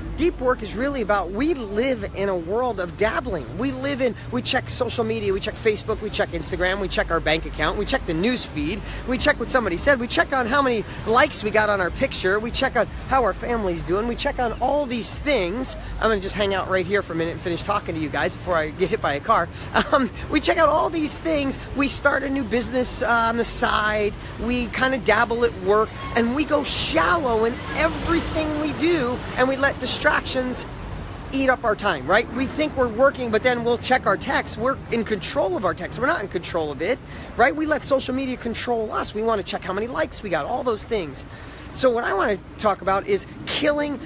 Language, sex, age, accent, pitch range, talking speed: English, male, 30-49, American, 205-275 Hz, 235 wpm